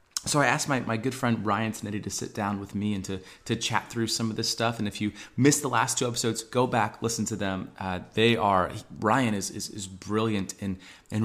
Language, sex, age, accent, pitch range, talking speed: English, male, 30-49, American, 100-120 Hz, 245 wpm